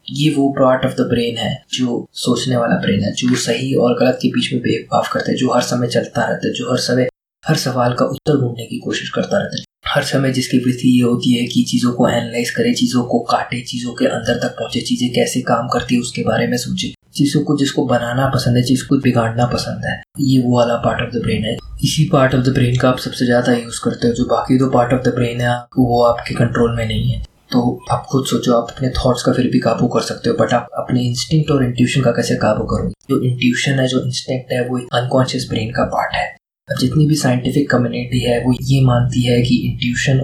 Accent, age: native, 20-39